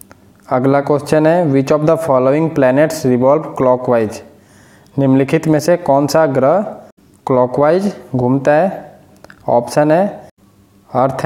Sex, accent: male, Indian